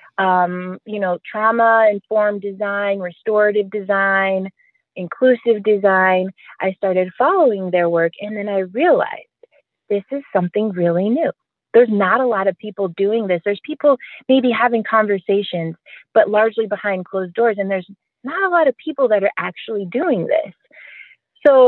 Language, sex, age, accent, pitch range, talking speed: English, female, 30-49, American, 195-235 Hz, 150 wpm